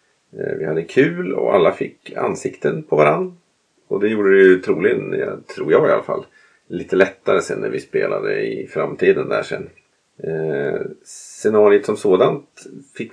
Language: Swedish